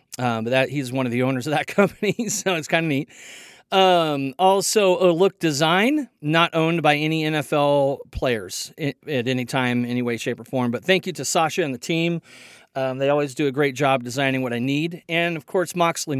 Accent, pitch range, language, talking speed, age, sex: American, 135-180 Hz, English, 215 wpm, 40-59, male